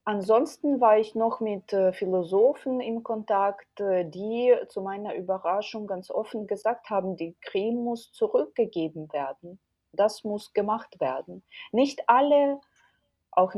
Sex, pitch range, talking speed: female, 165-225 Hz, 125 wpm